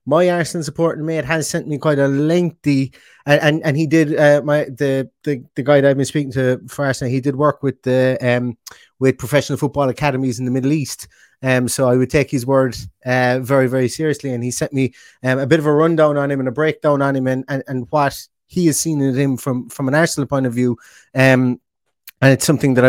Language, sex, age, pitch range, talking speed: English, male, 20-39, 130-165 Hz, 240 wpm